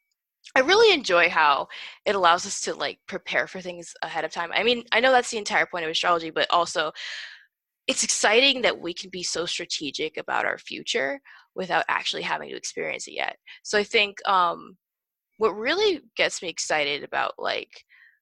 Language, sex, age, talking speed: English, female, 20-39, 185 wpm